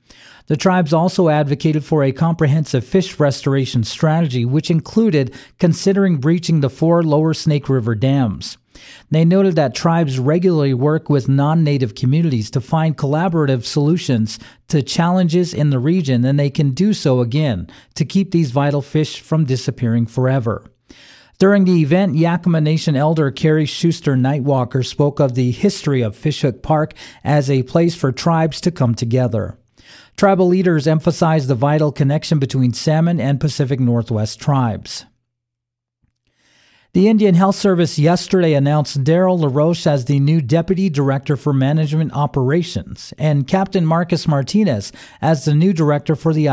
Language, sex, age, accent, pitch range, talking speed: English, male, 40-59, American, 135-165 Hz, 145 wpm